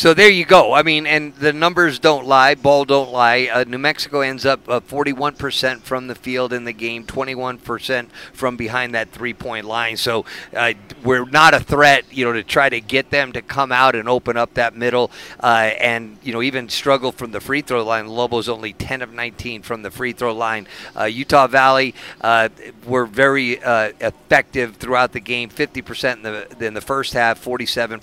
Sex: male